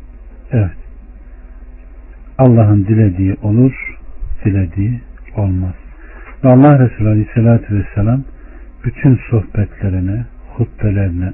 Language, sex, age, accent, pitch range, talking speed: Turkish, male, 60-79, native, 95-125 Hz, 75 wpm